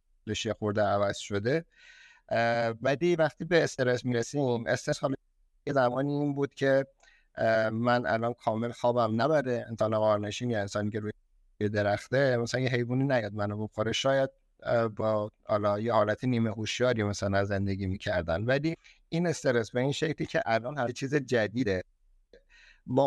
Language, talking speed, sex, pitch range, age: Persian, 145 wpm, male, 105-130 Hz, 50-69